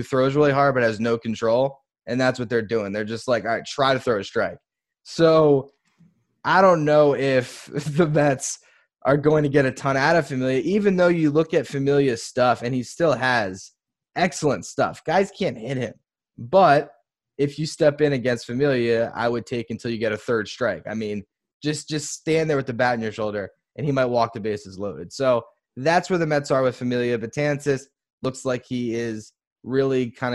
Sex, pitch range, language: male, 115-140 Hz, English